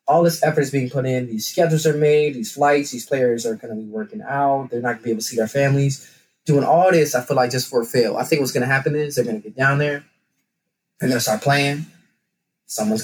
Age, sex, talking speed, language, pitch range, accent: 20-39, male, 270 wpm, English, 125-155 Hz, American